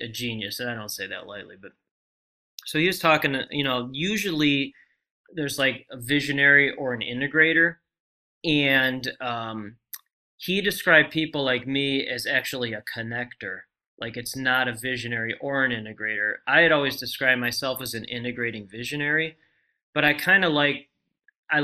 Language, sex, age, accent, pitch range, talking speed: English, male, 20-39, American, 120-155 Hz, 160 wpm